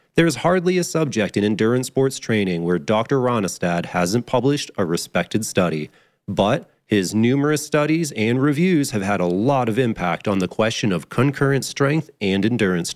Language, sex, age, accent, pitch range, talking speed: English, male, 30-49, American, 105-155 Hz, 170 wpm